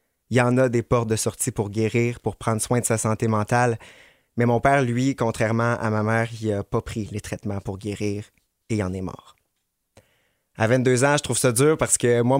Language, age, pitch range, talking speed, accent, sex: French, 20-39, 105-120 Hz, 230 wpm, Canadian, male